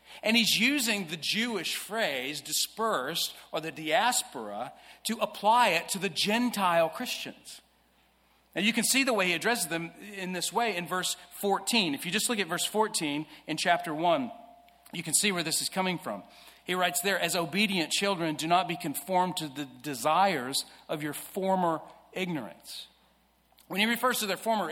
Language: English